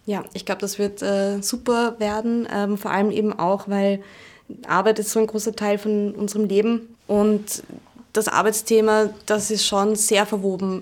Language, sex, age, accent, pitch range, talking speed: German, female, 20-39, German, 190-210 Hz, 170 wpm